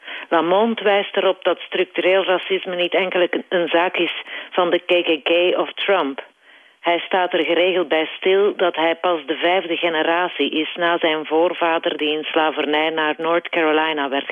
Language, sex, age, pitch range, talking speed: Dutch, female, 50-69, 155-185 Hz, 165 wpm